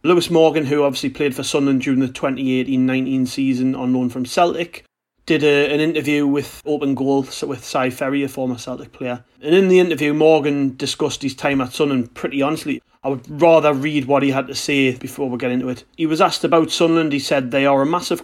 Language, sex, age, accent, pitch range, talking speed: English, male, 30-49, British, 130-150 Hz, 215 wpm